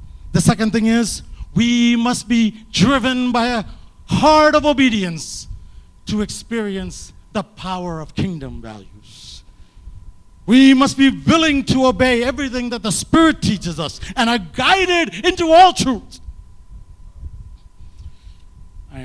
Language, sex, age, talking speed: English, male, 50-69, 125 wpm